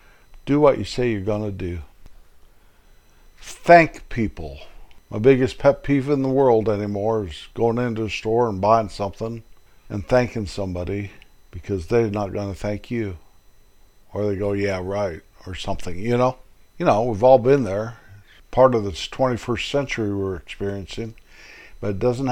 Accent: American